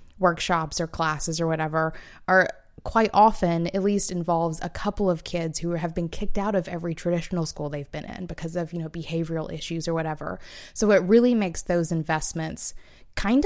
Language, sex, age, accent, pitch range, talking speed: English, female, 20-39, American, 165-205 Hz, 185 wpm